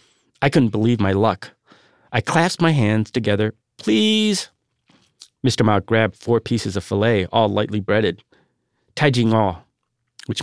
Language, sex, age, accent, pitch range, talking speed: English, male, 40-59, American, 110-135 Hz, 130 wpm